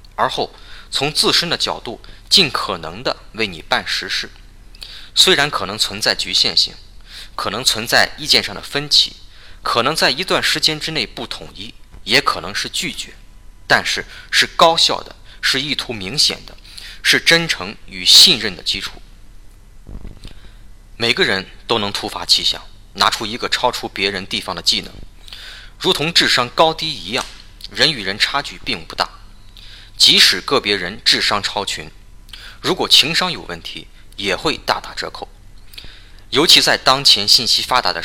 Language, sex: Chinese, male